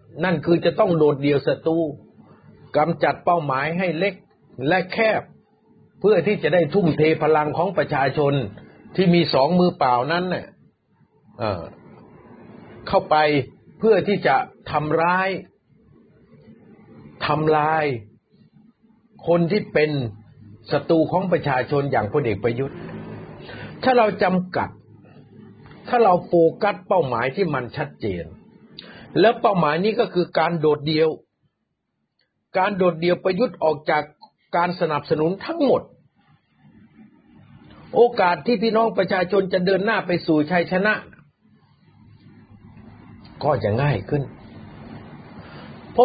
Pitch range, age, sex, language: 140-185 Hz, 60-79, male, Thai